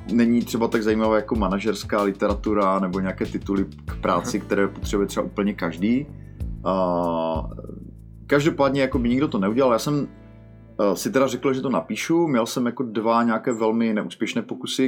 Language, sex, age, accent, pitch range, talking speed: Czech, male, 30-49, native, 100-115 Hz, 155 wpm